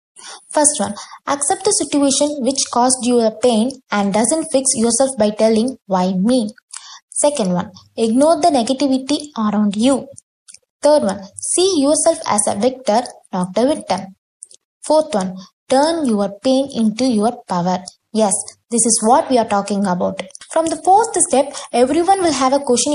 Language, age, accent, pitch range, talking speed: English, 20-39, Indian, 220-295 Hz, 155 wpm